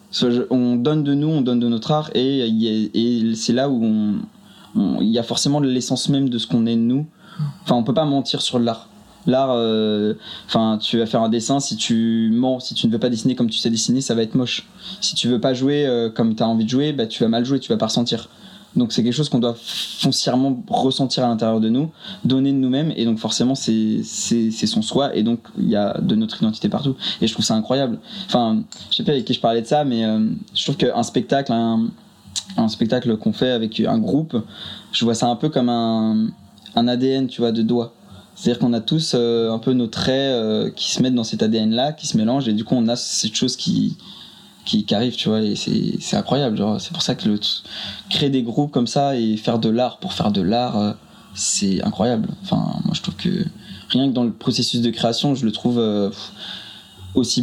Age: 20-39